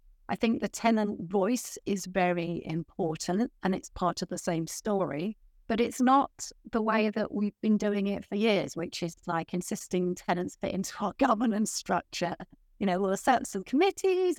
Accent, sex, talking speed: British, female, 180 wpm